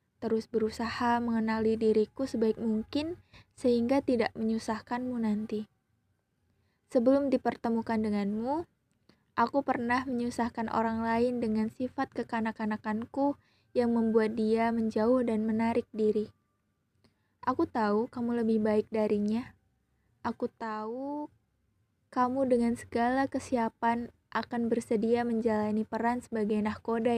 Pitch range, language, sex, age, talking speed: 215-240 Hz, Indonesian, female, 20-39, 100 wpm